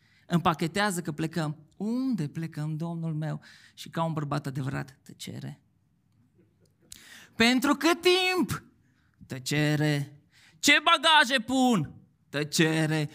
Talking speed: 95 wpm